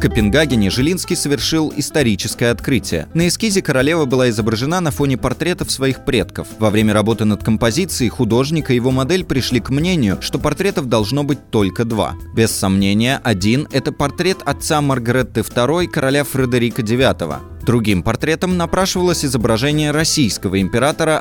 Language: Russian